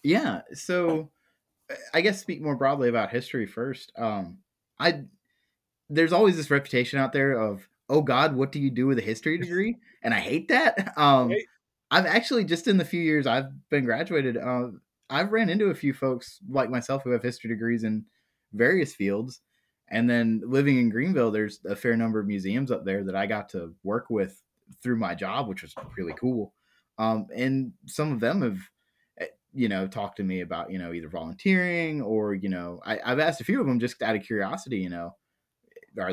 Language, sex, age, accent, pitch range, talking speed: English, male, 20-39, American, 105-155 Hz, 200 wpm